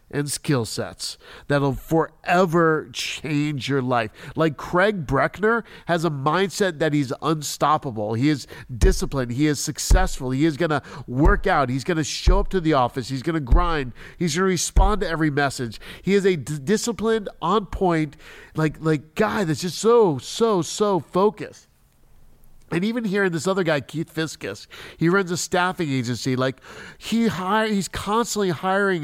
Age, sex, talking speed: 50-69, male, 165 wpm